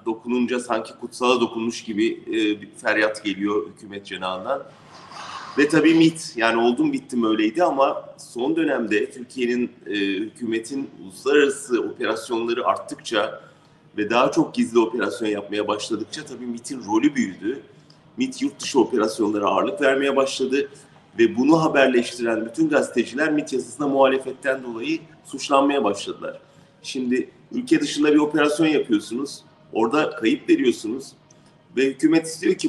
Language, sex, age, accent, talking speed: German, male, 40-59, Turkish, 125 wpm